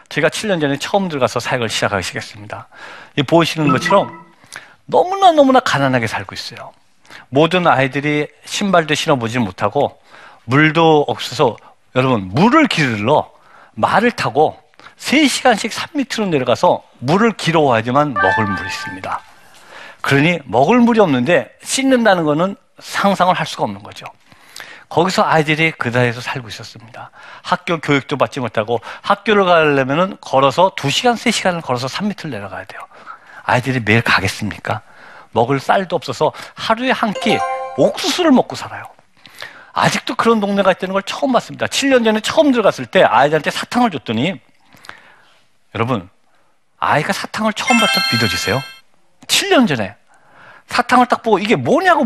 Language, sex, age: Korean, male, 50-69